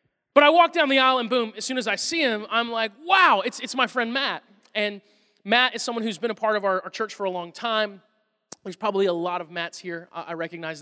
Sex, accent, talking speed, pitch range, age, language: male, American, 265 wpm, 185-235 Hz, 20-39, English